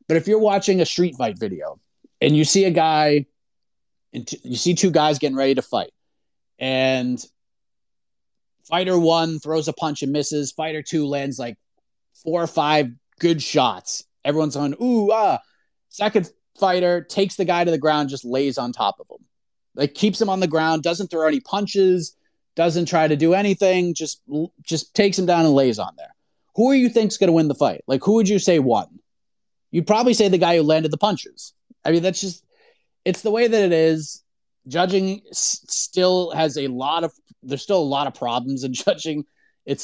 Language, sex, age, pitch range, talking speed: English, male, 30-49, 145-190 Hz, 195 wpm